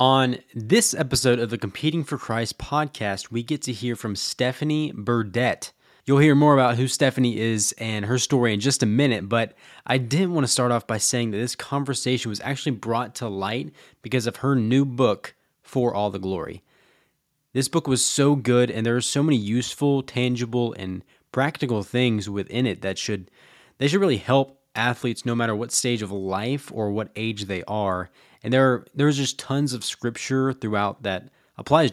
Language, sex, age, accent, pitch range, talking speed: English, male, 20-39, American, 110-135 Hz, 190 wpm